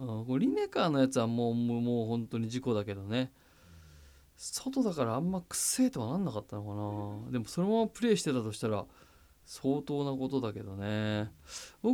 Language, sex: Japanese, male